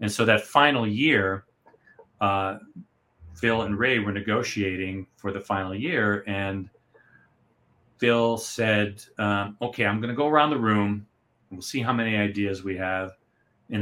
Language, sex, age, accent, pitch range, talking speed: English, male, 40-59, American, 95-115 Hz, 150 wpm